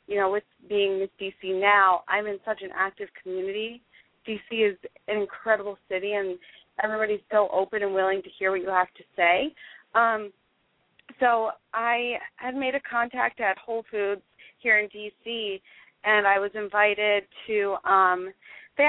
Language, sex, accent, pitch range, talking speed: English, female, American, 190-220 Hz, 160 wpm